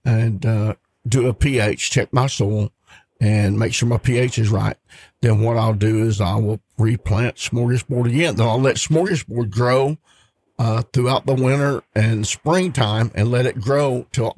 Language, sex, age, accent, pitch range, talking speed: English, male, 50-69, American, 110-135 Hz, 170 wpm